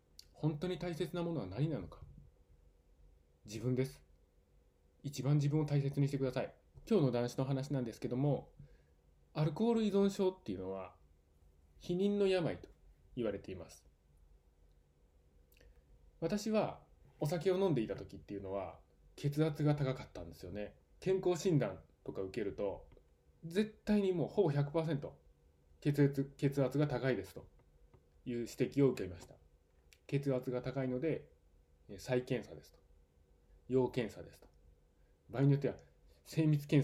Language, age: Japanese, 20-39